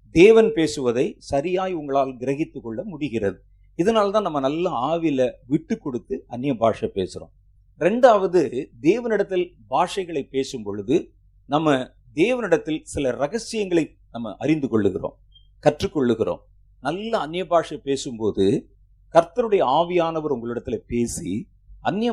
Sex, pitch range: male, 115-170 Hz